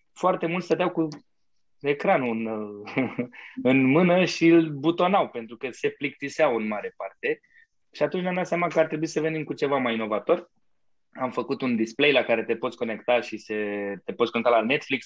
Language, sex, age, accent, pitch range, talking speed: Romanian, male, 20-39, native, 120-155 Hz, 190 wpm